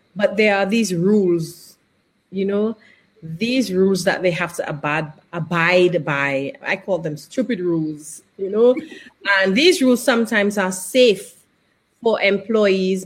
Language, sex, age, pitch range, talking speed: English, female, 30-49, 180-220 Hz, 140 wpm